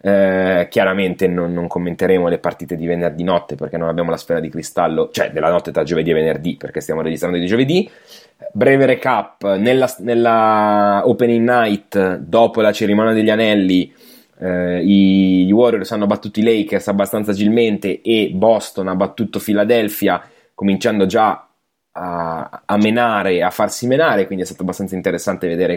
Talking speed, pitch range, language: 160 wpm, 90-110 Hz, Italian